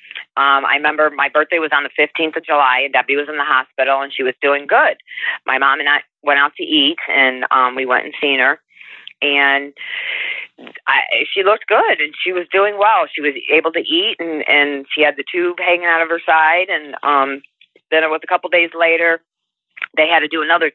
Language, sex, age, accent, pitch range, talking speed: English, female, 40-59, American, 145-190 Hz, 225 wpm